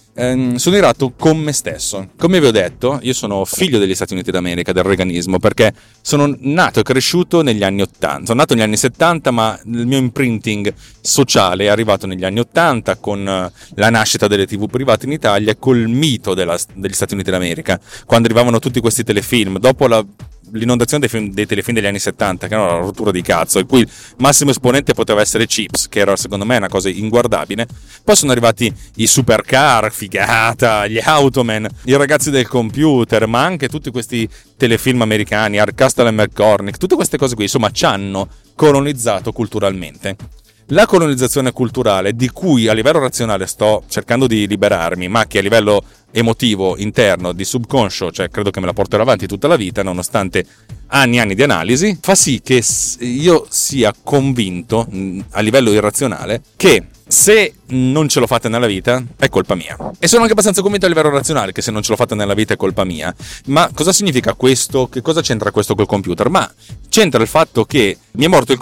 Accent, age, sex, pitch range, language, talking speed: native, 30-49, male, 105-130 Hz, Italian, 190 wpm